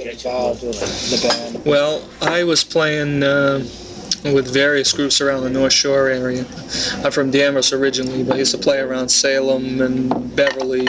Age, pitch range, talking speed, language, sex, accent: 20-39, 130-140 Hz, 145 wpm, English, male, American